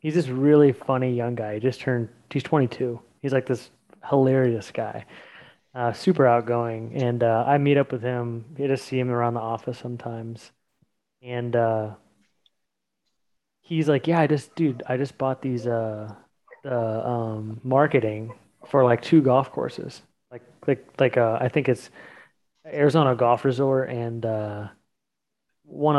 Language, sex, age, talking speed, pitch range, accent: English, male, 20-39, 160 wpm, 120-145 Hz, American